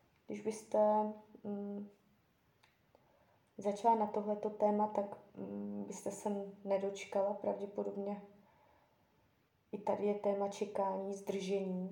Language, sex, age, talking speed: Czech, female, 20-39, 95 wpm